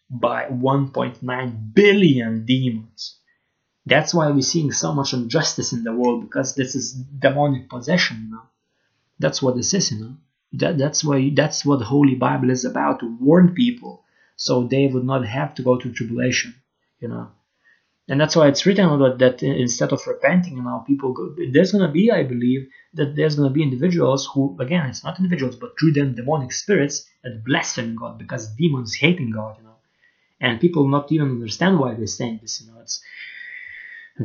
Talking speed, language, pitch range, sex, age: 190 wpm, English, 125-155 Hz, male, 30-49